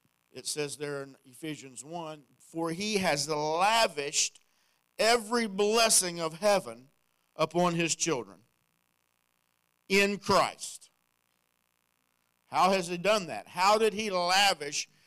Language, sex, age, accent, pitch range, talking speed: English, male, 50-69, American, 135-200 Hz, 110 wpm